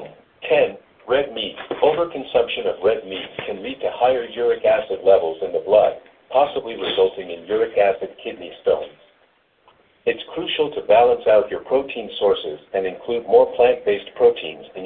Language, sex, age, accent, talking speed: English, male, 50-69, American, 155 wpm